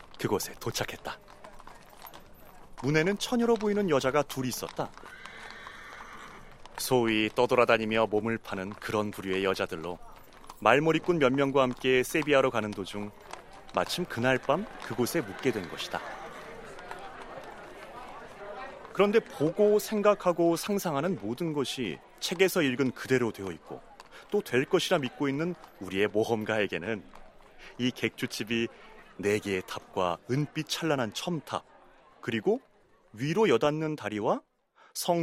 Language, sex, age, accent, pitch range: Korean, male, 30-49, native, 110-165 Hz